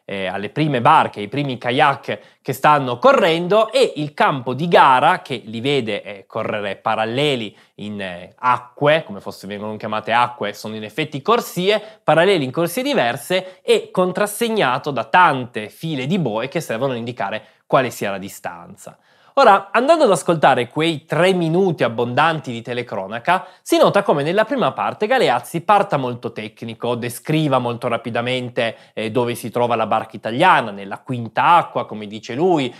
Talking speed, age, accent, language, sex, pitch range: 160 wpm, 20-39, native, Italian, male, 115-165 Hz